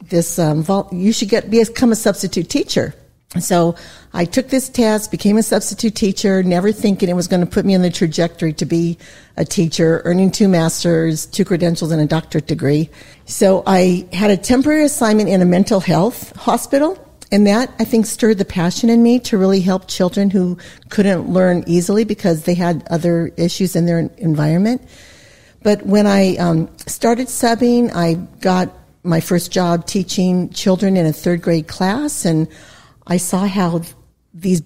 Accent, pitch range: American, 175-215 Hz